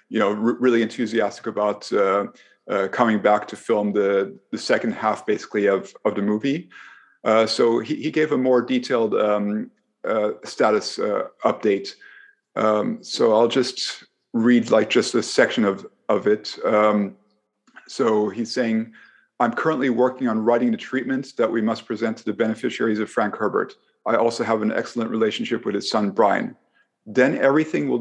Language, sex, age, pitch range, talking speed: English, male, 50-69, 105-135 Hz, 170 wpm